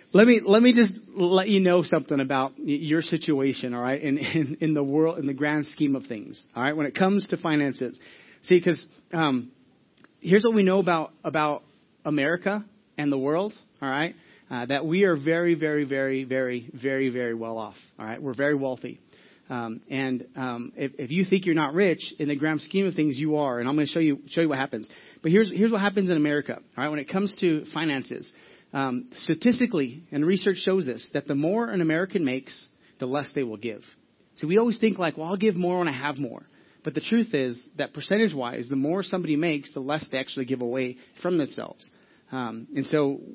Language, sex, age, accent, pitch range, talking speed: English, male, 30-49, American, 135-180 Hz, 220 wpm